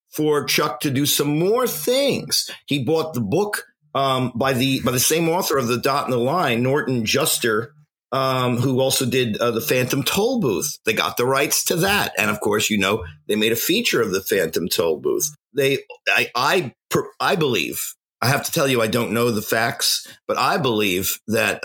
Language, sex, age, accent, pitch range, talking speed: English, male, 50-69, American, 115-155 Hz, 200 wpm